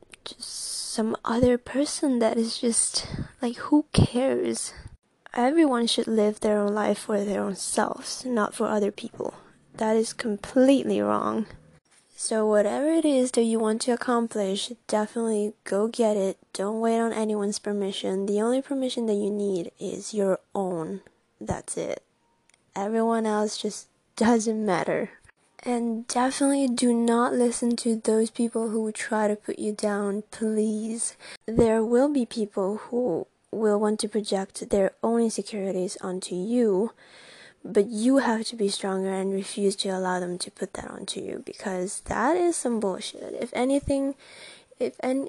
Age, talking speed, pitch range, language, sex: 10-29, 150 wpm, 205-245 Hz, English, female